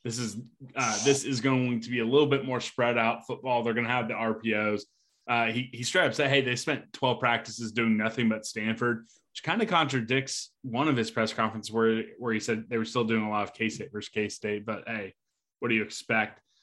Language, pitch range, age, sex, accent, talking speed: English, 110-130 Hz, 20-39, male, American, 235 wpm